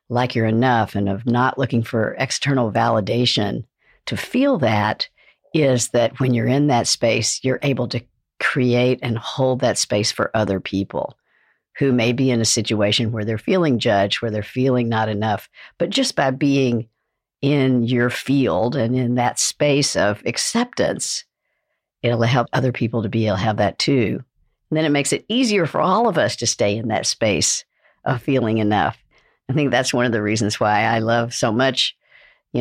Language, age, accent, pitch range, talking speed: English, 60-79, American, 110-130 Hz, 185 wpm